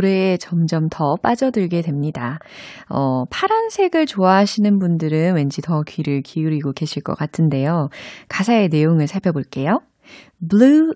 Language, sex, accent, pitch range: Korean, female, native, 150-220 Hz